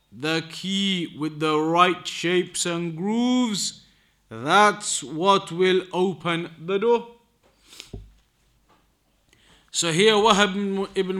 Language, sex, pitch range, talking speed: English, male, 160-200 Hz, 95 wpm